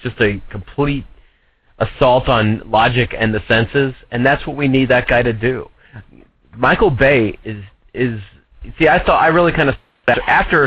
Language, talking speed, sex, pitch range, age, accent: English, 170 wpm, male, 100-125 Hz, 30-49, American